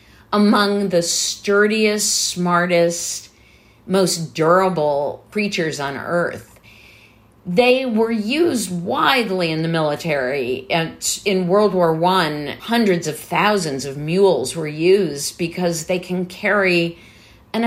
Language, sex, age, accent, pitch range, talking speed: English, female, 50-69, American, 150-200 Hz, 110 wpm